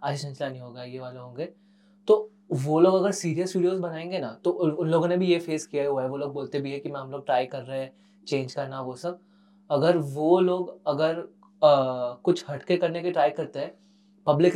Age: 20-39